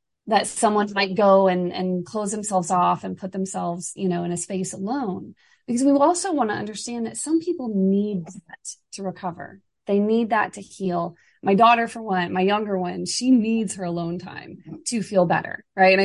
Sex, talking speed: female, 200 wpm